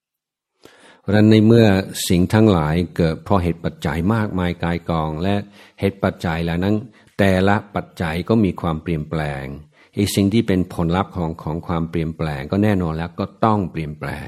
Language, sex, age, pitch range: Thai, male, 60-79, 80-100 Hz